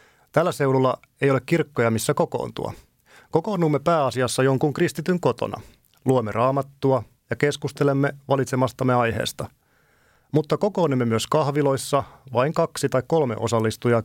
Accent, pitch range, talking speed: native, 120-150 Hz, 115 wpm